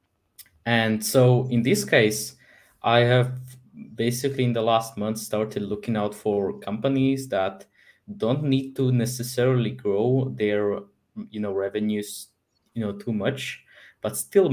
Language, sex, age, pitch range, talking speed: English, male, 20-39, 100-120 Hz, 135 wpm